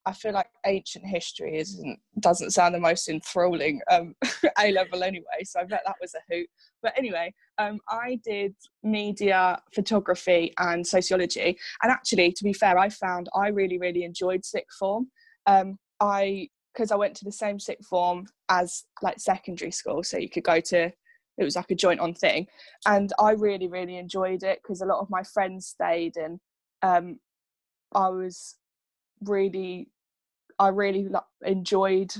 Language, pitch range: English, 175-205 Hz